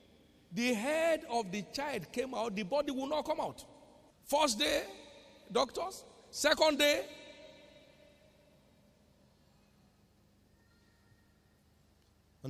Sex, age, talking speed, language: male, 50-69, 90 wpm, Portuguese